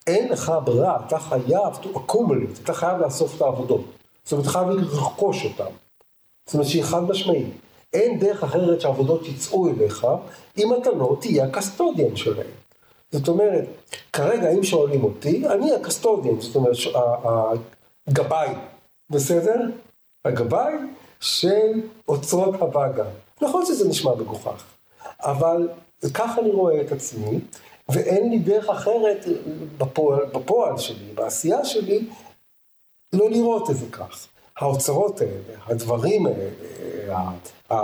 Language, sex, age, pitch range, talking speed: Hebrew, male, 50-69, 140-220 Hz, 125 wpm